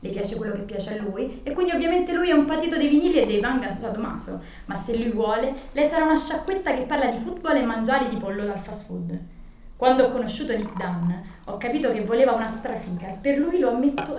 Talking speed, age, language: 235 wpm, 20-39, Italian